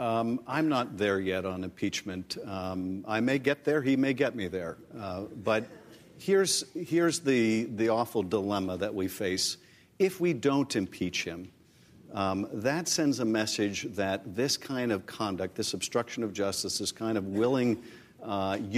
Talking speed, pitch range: 165 wpm, 100-135 Hz